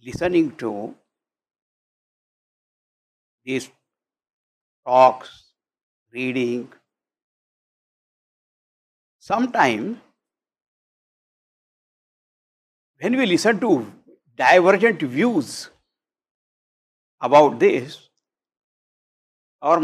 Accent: Indian